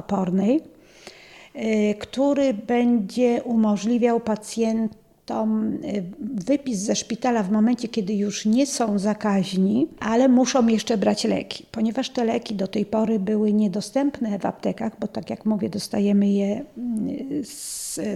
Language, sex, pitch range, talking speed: Polish, female, 200-235 Hz, 125 wpm